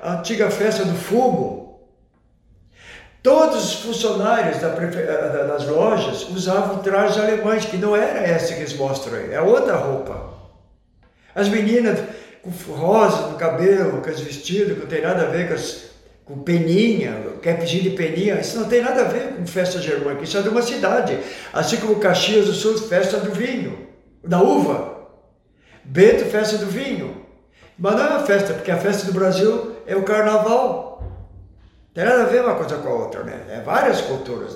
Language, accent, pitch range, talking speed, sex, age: Portuguese, Brazilian, 175-235 Hz, 185 wpm, male, 60-79